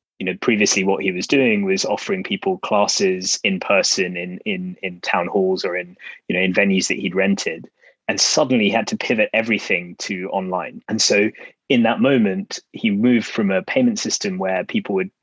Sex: male